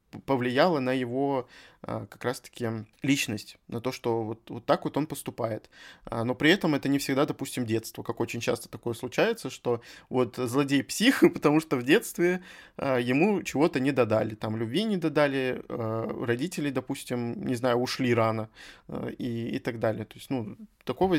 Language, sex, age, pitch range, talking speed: Russian, male, 20-39, 120-150 Hz, 160 wpm